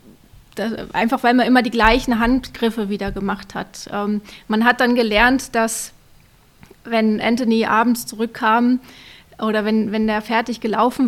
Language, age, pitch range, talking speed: German, 20-39, 220-245 Hz, 145 wpm